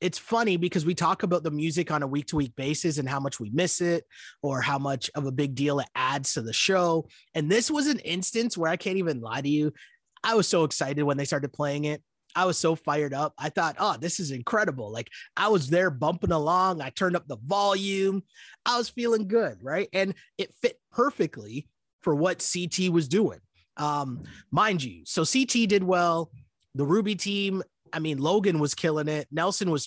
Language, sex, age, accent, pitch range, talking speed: English, male, 30-49, American, 140-185 Hz, 210 wpm